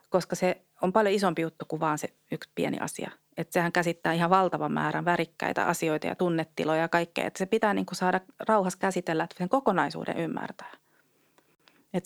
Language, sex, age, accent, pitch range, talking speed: Finnish, female, 30-49, native, 165-205 Hz, 180 wpm